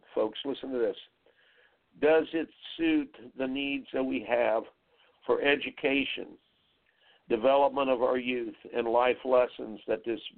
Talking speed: 135 wpm